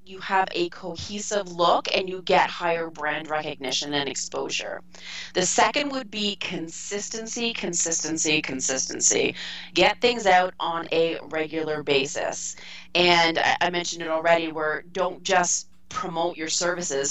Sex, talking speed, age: female, 135 wpm, 20-39